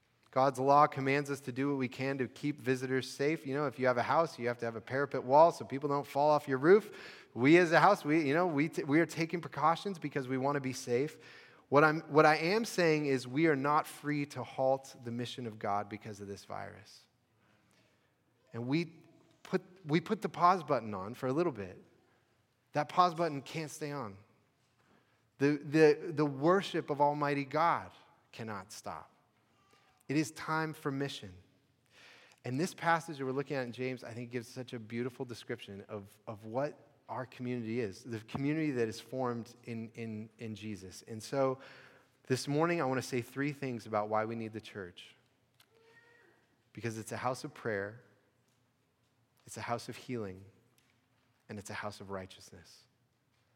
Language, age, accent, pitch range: English, 30-49, American, 115-150 Hz